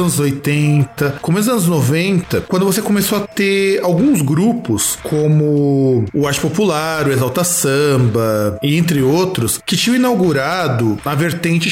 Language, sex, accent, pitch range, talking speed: Portuguese, male, Brazilian, 145-205 Hz, 140 wpm